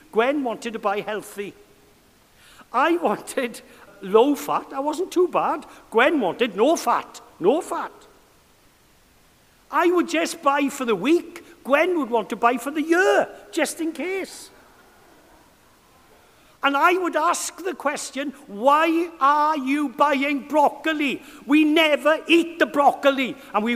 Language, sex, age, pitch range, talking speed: English, male, 60-79, 210-325 Hz, 140 wpm